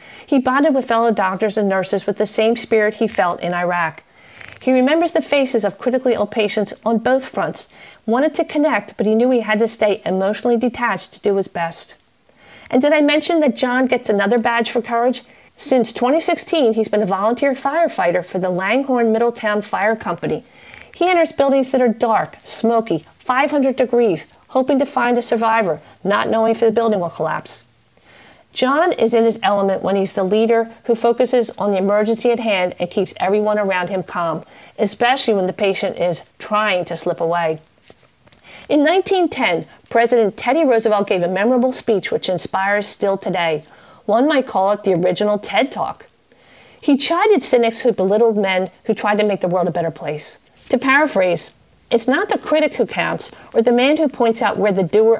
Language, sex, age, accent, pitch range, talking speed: English, female, 40-59, American, 195-250 Hz, 185 wpm